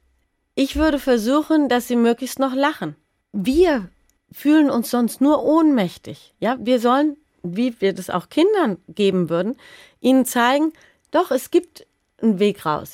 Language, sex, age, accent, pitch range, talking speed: German, female, 30-49, German, 185-260 Hz, 150 wpm